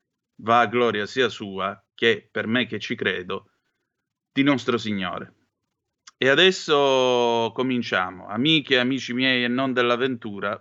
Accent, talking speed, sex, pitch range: native, 135 wpm, male, 135-175 Hz